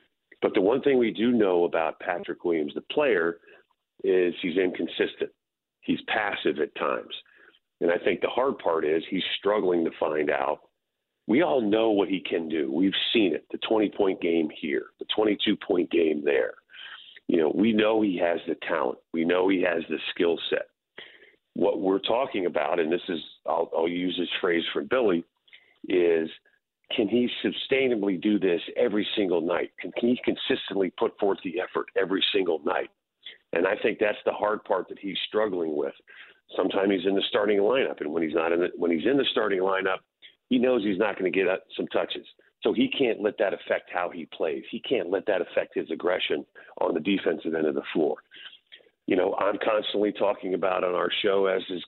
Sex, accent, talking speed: male, American, 200 wpm